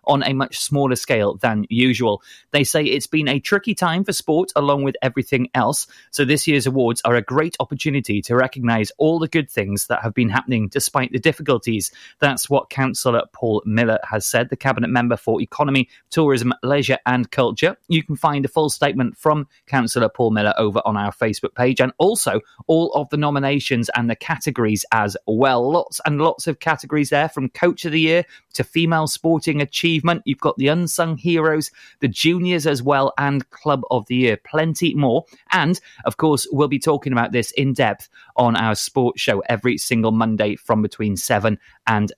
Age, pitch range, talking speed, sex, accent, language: 30-49, 120-160 Hz, 190 wpm, male, British, English